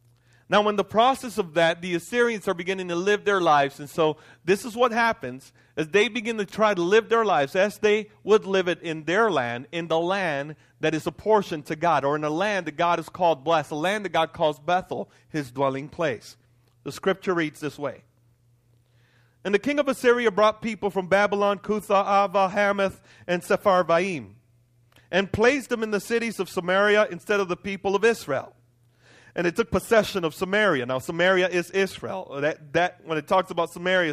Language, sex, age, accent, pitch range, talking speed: English, male, 40-59, American, 150-210 Hz, 200 wpm